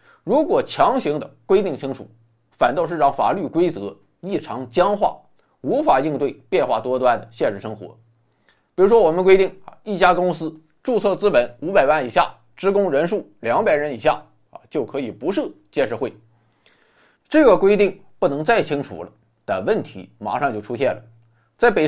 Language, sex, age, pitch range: Chinese, male, 20-39, 115-190 Hz